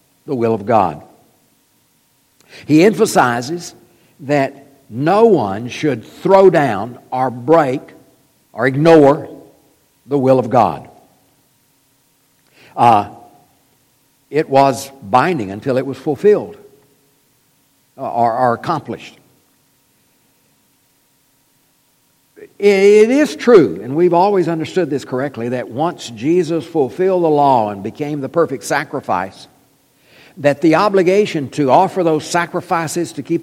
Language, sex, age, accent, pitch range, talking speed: English, male, 60-79, American, 135-180 Hz, 110 wpm